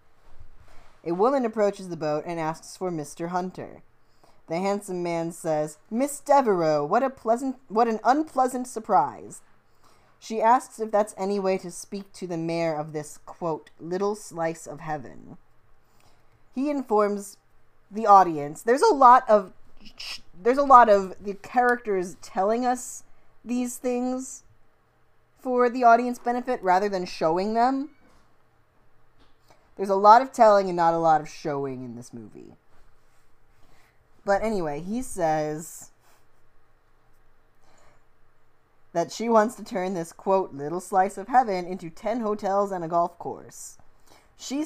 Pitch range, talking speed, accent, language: 165-225 Hz, 140 wpm, American, English